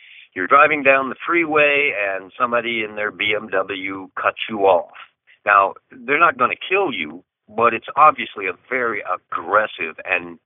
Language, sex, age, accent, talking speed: English, male, 50-69, American, 155 wpm